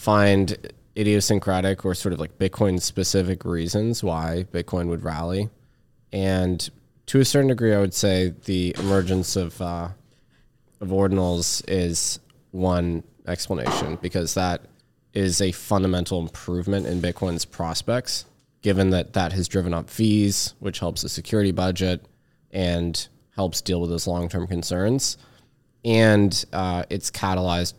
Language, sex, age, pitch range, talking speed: English, male, 20-39, 90-110 Hz, 135 wpm